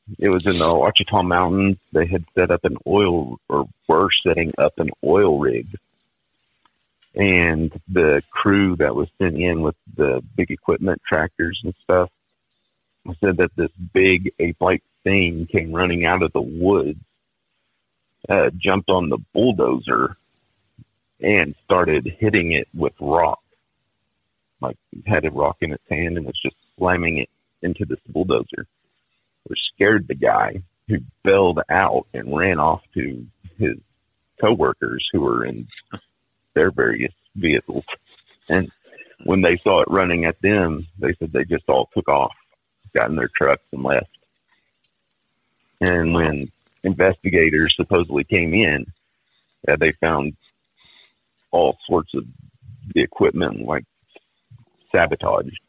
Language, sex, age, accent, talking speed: English, male, 50-69, American, 135 wpm